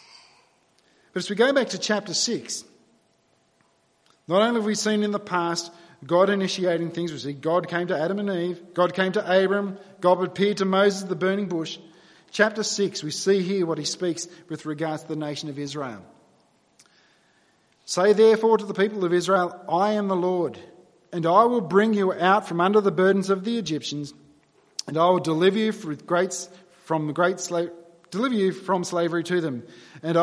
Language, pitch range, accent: English, 165-210 Hz, Australian